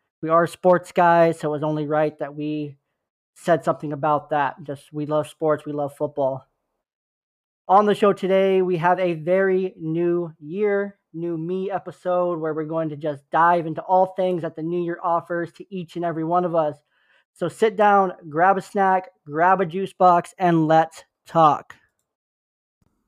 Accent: American